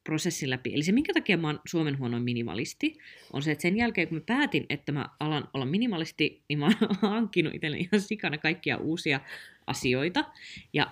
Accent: native